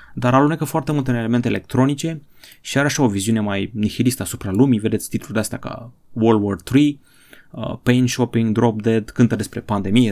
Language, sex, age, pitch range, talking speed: Romanian, male, 20-39, 105-130 Hz, 180 wpm